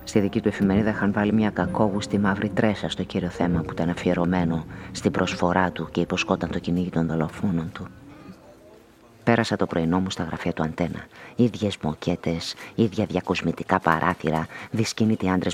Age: 30-49